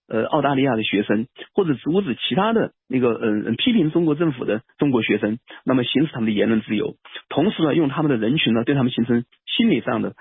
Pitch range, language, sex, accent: 110-150 Hz, Chinese, male, native